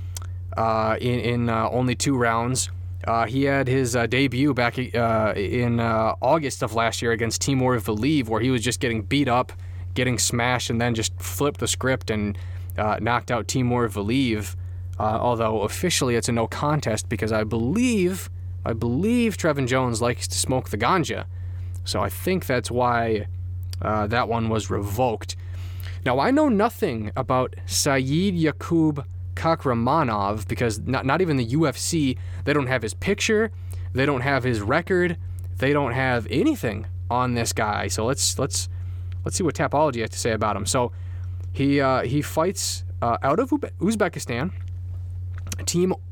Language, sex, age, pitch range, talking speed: English, male, 20-39, 90-130 Hz, 165 wpm